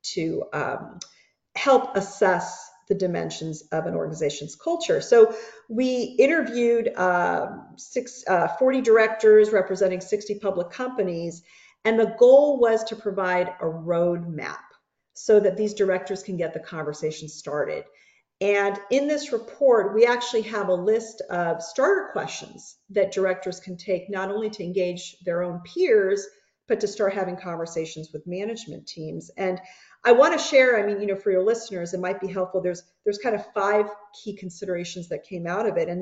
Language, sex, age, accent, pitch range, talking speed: English, female, 40-59, American, 180-230 Hz, 165 wpm